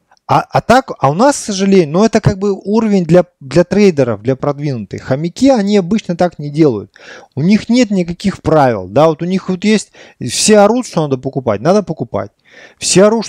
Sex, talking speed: male, 200 wpm